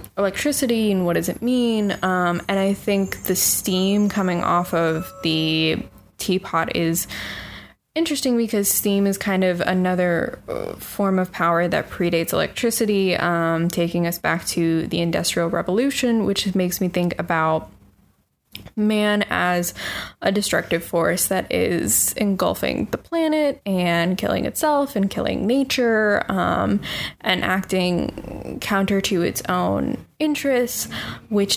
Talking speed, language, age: 130 wpm, English, 10-29